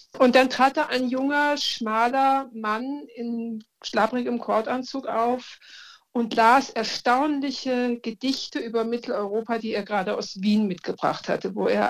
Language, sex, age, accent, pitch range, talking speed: German, female, 60-79, German, 210-260 Hz, 135 wpm